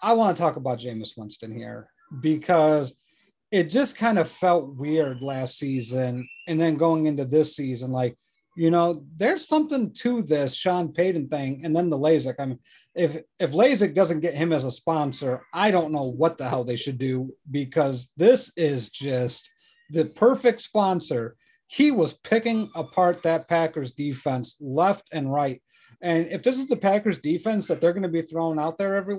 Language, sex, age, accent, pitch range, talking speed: English, male, 40-59, American, 140-190 Hz, 185 wpm